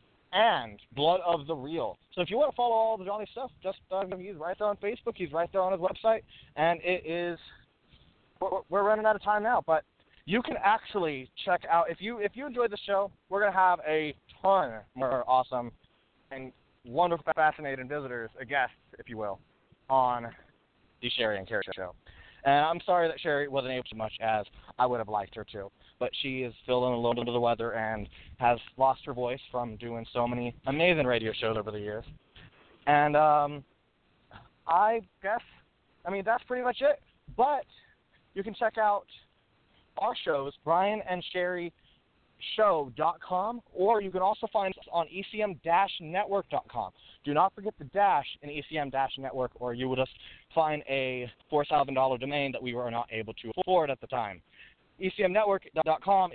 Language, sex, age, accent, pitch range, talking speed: English, male, 20-39, American, 125-195 Hz, 185 wpm